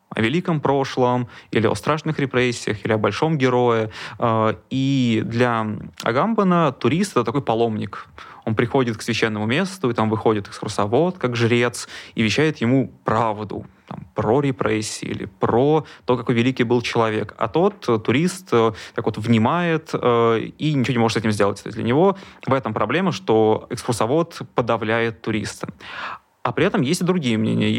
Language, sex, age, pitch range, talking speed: Russian, male, 20-39, 110-135 Hz, 160 wpm